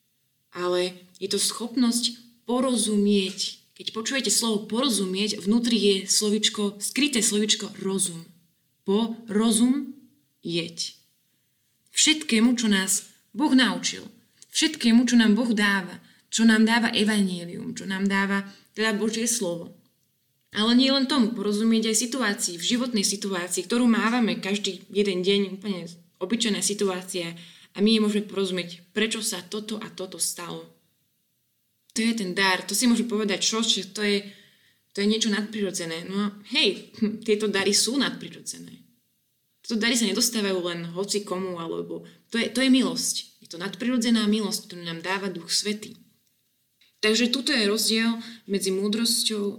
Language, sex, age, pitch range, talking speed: Slovak, female, 20-39, 185-225 Hz, 140 wpm